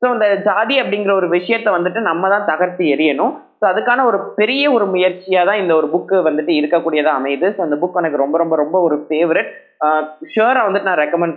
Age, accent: 20-39, native